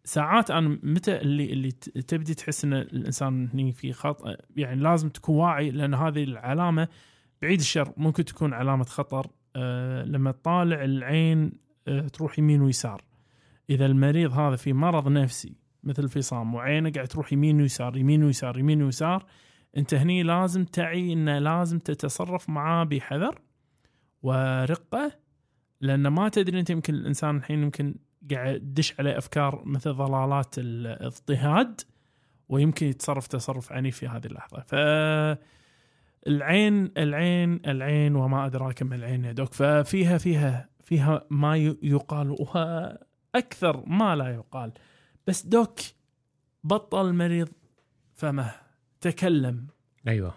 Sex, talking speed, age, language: male, 130 wpm, 20-39, Arabic